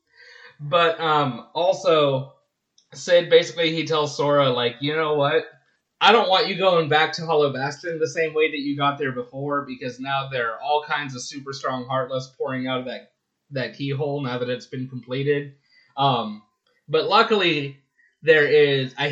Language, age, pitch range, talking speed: English, 20-39, 130-160 Hz, 175 wpm